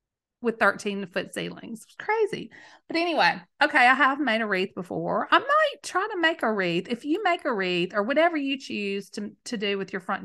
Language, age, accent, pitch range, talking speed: English, 40-59, American, 205-275 Hz, 215 wpm